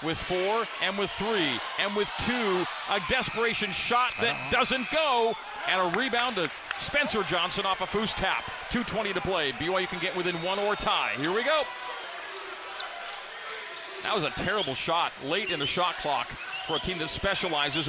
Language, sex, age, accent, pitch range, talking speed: English, male, 40-59, American, 170-255 Hz, 180 wpm